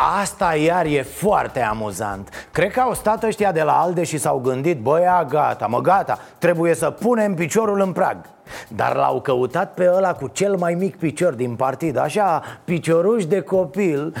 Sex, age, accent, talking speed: male, 30-49, native, 175 wpm